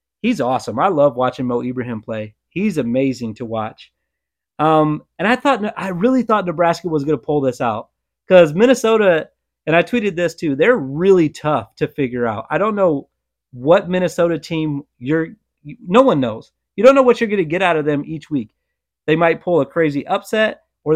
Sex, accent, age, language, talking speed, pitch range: male, American, 30-49, English, 205 wpm, 130-170 Hz